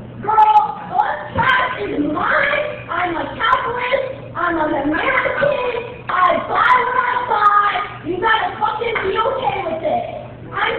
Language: English